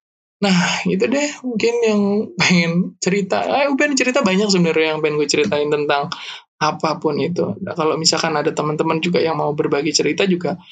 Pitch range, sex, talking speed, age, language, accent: 160-200 Hz, male, 170 wpm, 20-39, Indonesian, native